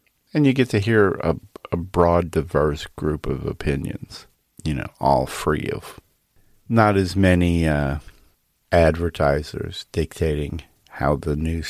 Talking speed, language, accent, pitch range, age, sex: 135 wpm, English, American, 80-105 Hz, 40-59, male